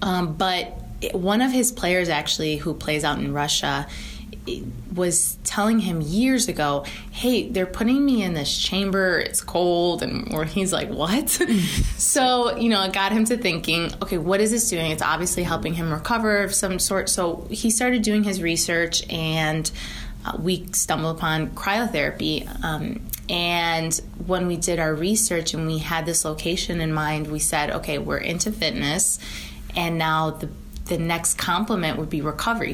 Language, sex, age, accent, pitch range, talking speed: English, female, 20-39, American, 160-205 Hz, 170 wpm